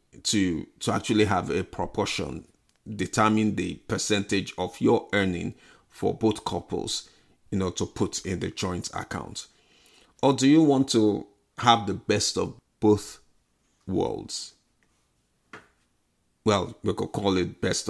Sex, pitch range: male, 95-115 Hz